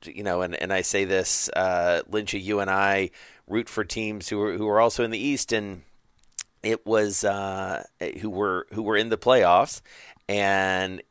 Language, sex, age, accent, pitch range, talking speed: English, male, 40-59, American, 100-130 Hz, 190 wpm